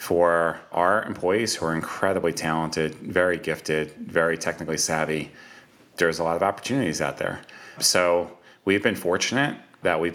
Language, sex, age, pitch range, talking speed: English, male, 30-49, 80-100 Hz, 150 wpm